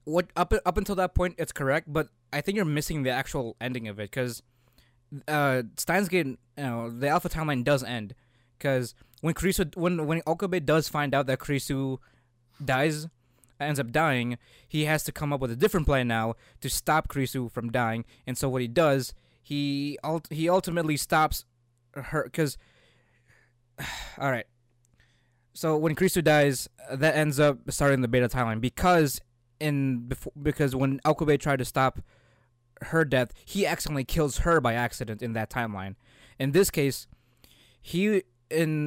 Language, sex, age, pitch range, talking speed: English, male, 20-39, 125-155 Hz, 165 wpm